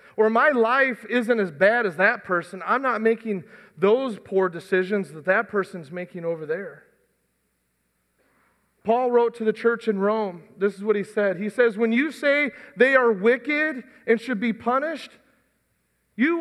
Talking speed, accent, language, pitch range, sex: 170 wpm, American, English, 230-295 Hz, male